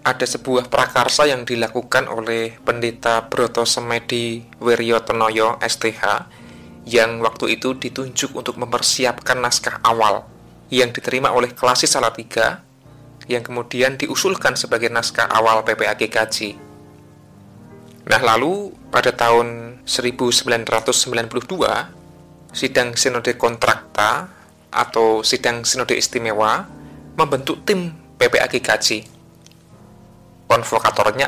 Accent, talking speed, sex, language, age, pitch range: native, 90 wpm, male, Indonesian, 20-39, 110-125 Hz